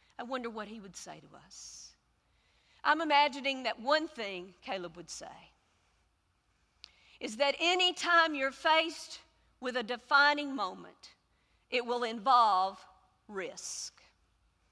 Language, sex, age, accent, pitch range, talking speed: English, female, 50-69, American, 200-310 Hz, 120 wpm